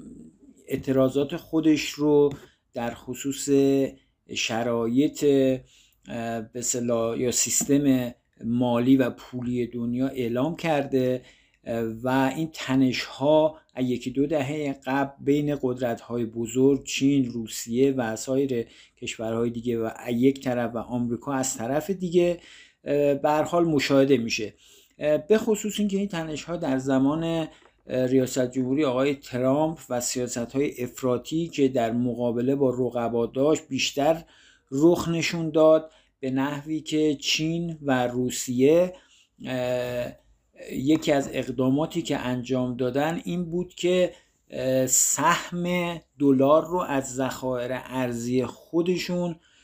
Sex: male